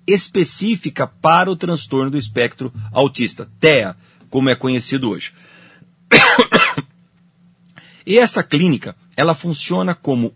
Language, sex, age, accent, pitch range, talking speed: Portuguese, male, 50-69, Brazilian, 135-175 Hz, 105 wpm